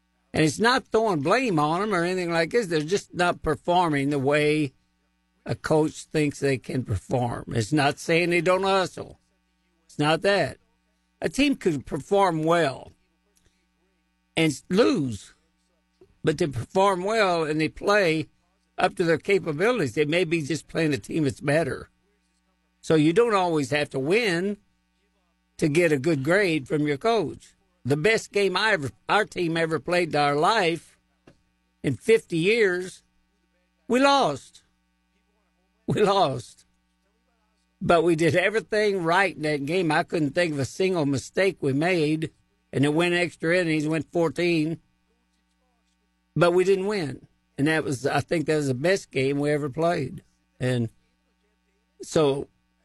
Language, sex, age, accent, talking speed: English, male, 60-79, American, 155 wpm